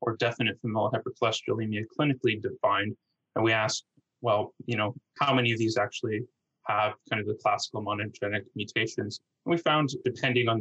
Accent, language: American, English